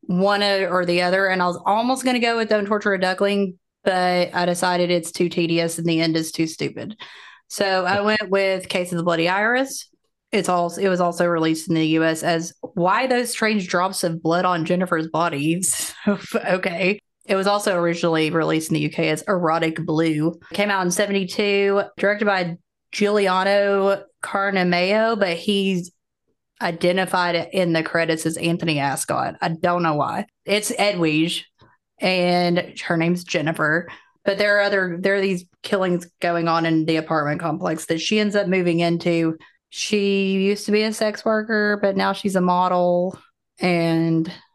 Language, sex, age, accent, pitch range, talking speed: English, female, 20-39, American, 165-200 Hz, 170 wpm